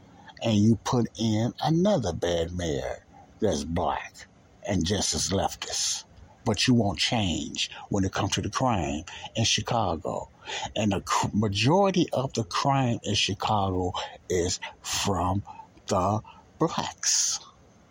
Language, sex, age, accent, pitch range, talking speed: English, male, 60-79, American, 95-120 Hz, 125 wpm